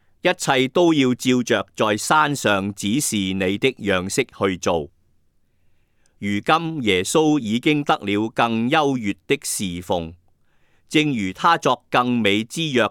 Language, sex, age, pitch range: Chinese, male, 50-69, 95-135 Hz